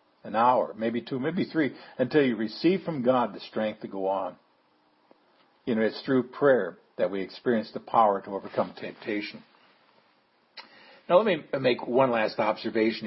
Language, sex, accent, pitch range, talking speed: English, male, American, 105-125 Hz, 165 wpm